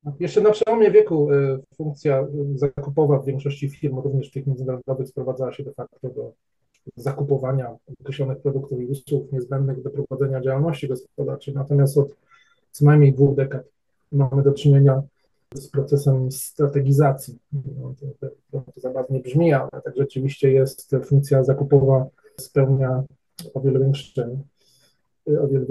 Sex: male